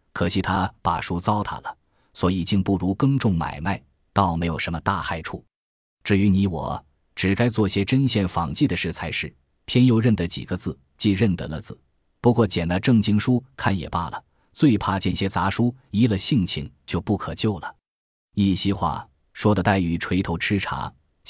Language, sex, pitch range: Chinese, male, 85-110 Hz